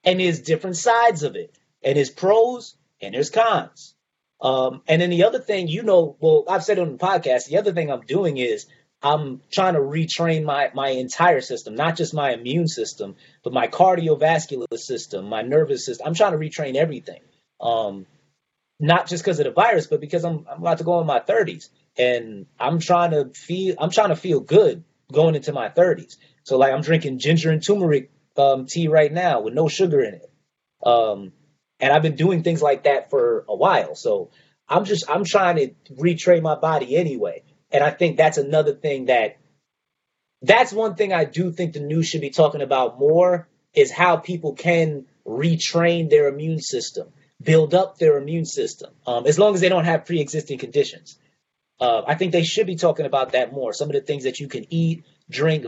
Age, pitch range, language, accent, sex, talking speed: 30-49, 145-185 Hz, English, American, male, 200 wpm